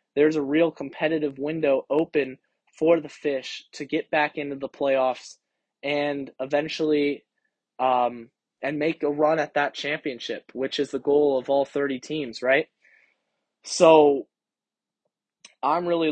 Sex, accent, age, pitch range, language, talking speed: male, American, 20-39, 135-155 Hz, English, 140 wpm